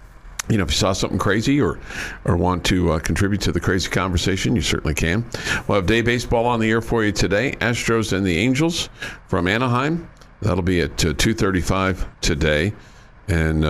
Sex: male